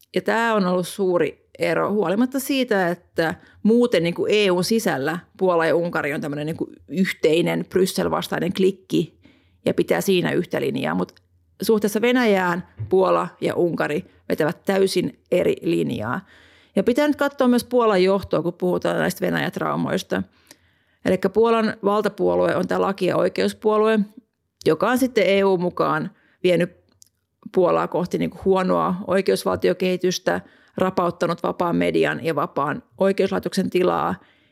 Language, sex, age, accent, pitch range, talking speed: Finnish, female, 30-49, native, 175-215 Hz, 125 wpm